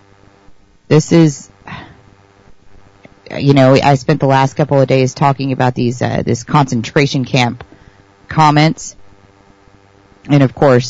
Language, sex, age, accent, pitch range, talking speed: English, female, 30-49, American, 100-145 Hz, 120 wpm